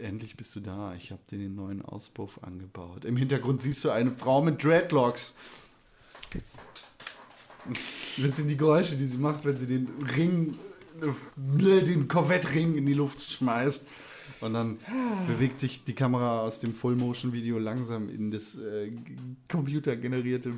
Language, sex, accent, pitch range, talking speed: German, male, German, 110-145 Hz, 145 wpm